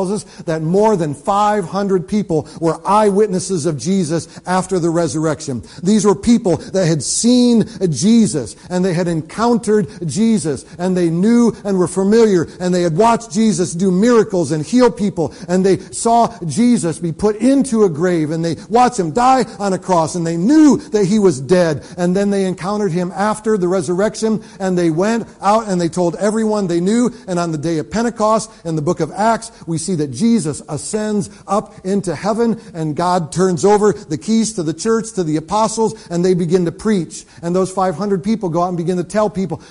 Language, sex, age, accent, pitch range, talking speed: English, male, 50-69, American, 170-215 Hz, 195 wpm